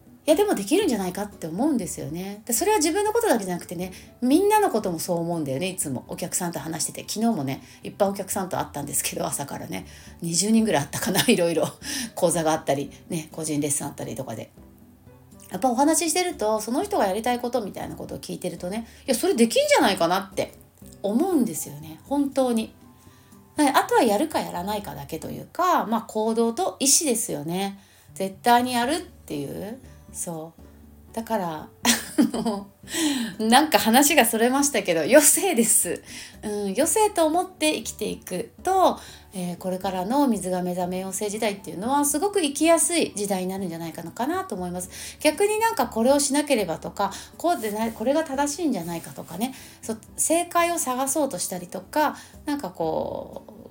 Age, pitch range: 30-49, 180-285 Hz